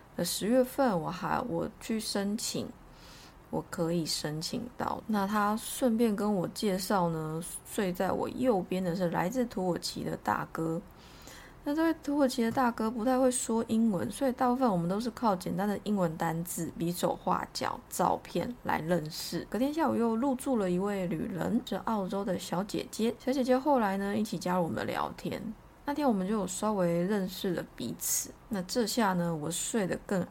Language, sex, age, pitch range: Chinese, female, 20-39, 180-235 Hz